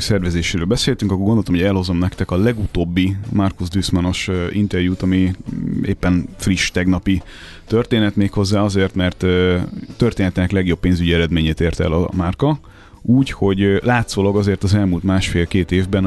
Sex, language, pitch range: male, Hungarian, 90-105 Hz